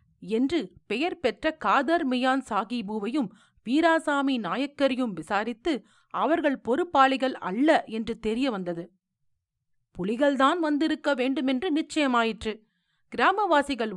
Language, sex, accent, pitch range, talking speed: Tamil, female, native, 215-300 Hz, 80 wpm